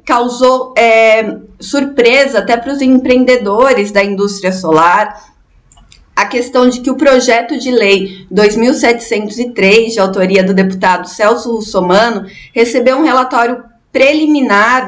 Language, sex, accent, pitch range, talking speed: Portuguese, female, Brazilian, 205-250 Hz, 115 wpm